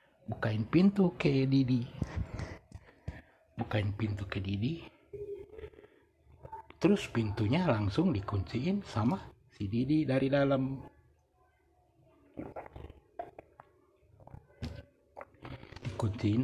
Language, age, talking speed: Indonesian, 60-79, 65 wpm